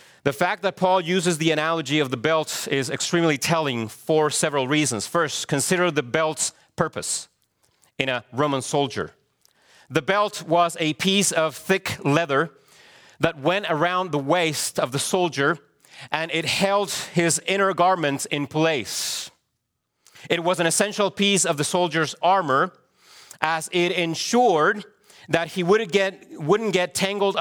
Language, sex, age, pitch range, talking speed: English, male, 40-59, 150-180 Hz, 145 wpm